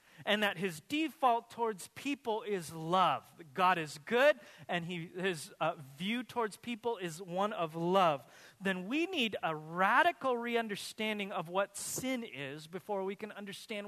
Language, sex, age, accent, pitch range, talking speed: English, male, 30-49, American, 150-205 Hz, 155 wpm